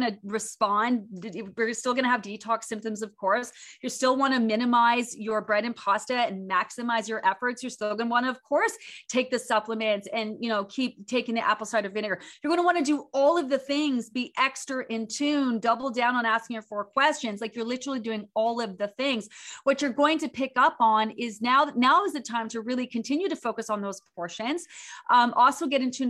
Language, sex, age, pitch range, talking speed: English, female, 30-49, 215-265 Hz, 230 wpm